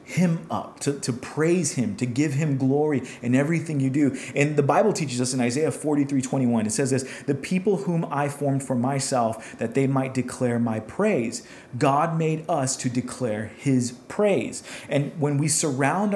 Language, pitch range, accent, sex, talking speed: English, 120-150 Hz, American, male, 185 wpm